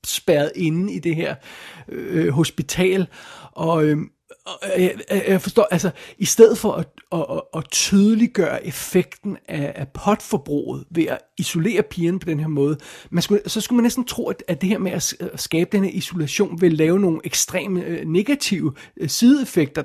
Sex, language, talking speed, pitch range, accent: male, Danish, 165 wpm, 155-185 Hz, native